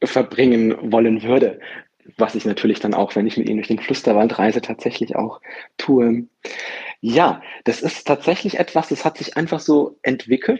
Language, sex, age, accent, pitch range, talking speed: German, male, 40-59, German, 115-150 Hz, 170 wpm